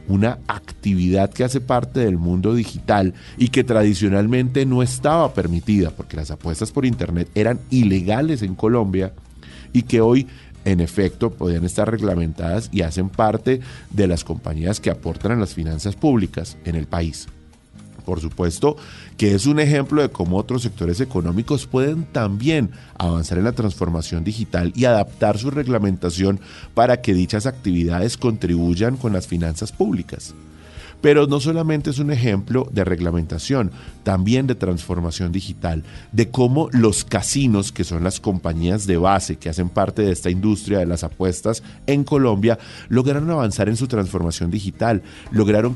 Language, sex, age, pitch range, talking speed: Spanish, male, 30-49, 85-120 Hz, 155 wpm